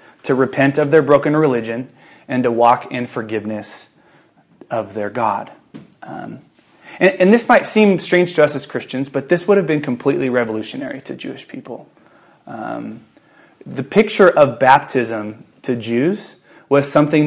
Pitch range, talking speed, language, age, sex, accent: 120-150 Hz, 155 wpm, English, 20-39, male, American